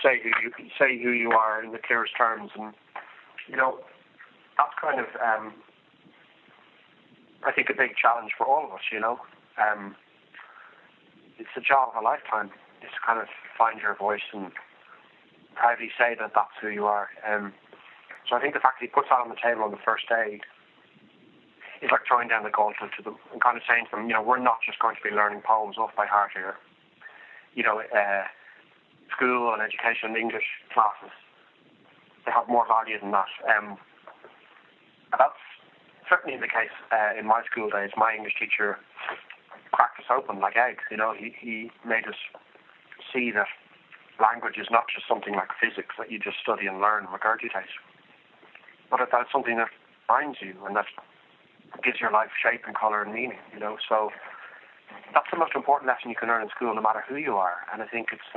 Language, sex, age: English, male, 30-49